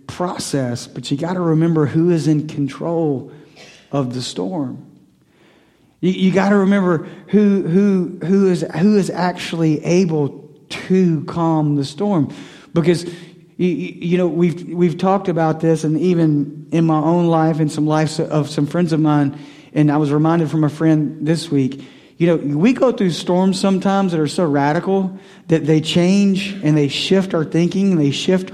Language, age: English, 50-69